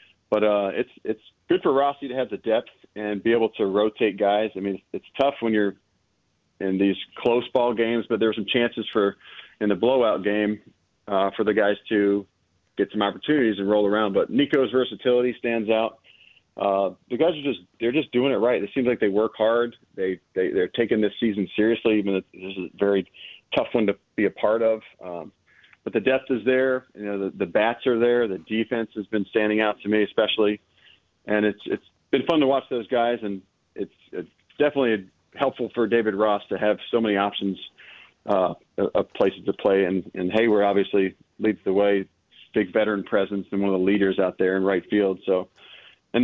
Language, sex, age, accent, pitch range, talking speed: English, male, 40-59, American, 100-115 Hz, 210 wpm